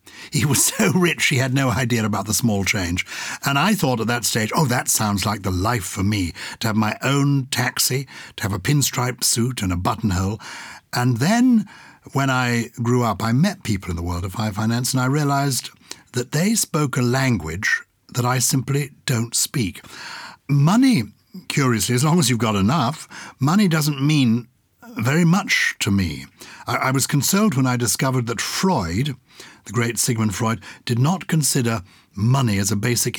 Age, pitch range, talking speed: 60-79, 105-140 Hz, 185 wpm